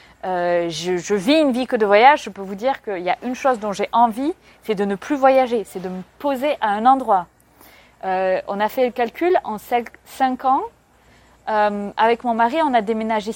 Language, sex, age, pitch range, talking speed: French, female, 20-39, 195-260 Hz, 220 wpm